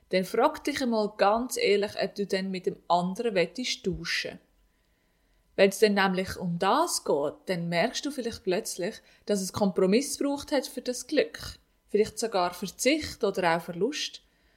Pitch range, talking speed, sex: 180-250 Hz, 170 wpm, female